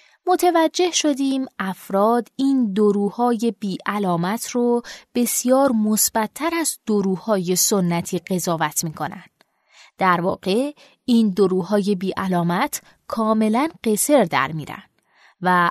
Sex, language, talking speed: female, Persian, 100 wpm